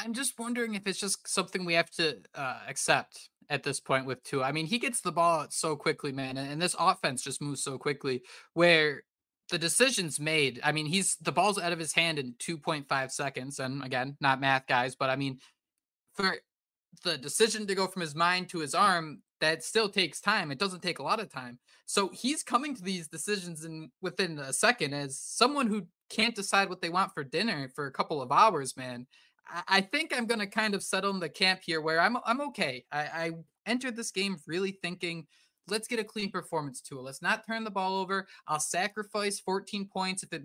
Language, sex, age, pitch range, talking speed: English, male, 20-39, 150-195 Hz, 215 wpm